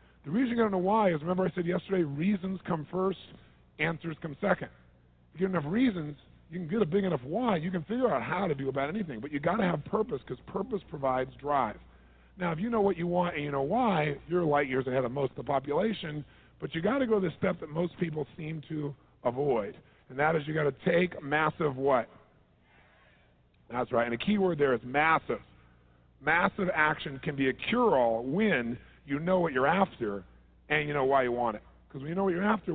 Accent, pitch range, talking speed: American, 130-185 Hz, 235 wpm